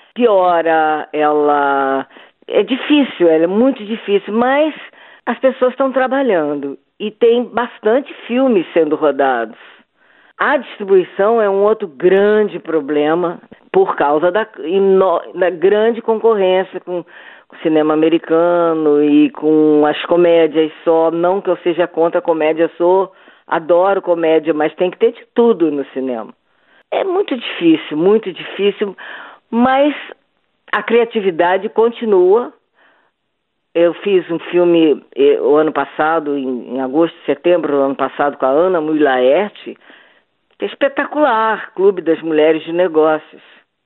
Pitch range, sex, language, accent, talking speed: 160-235 Hz, female, Portuguese, Brazilian, 130 wpm